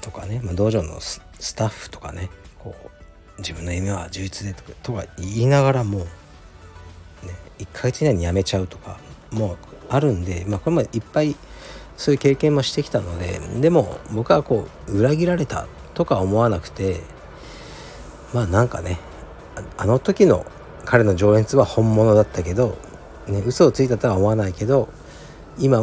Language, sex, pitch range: Japanese, male, 85-120 Hz